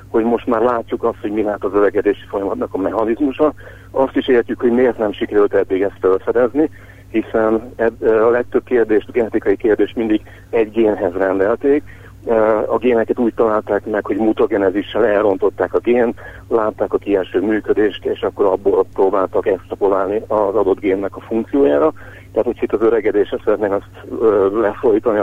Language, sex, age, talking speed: Hungarian, male, 60-79, 155 wpm